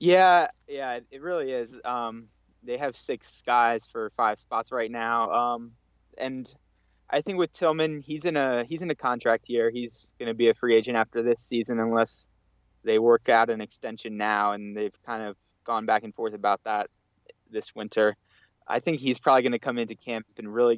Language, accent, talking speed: English, American, 200 wpm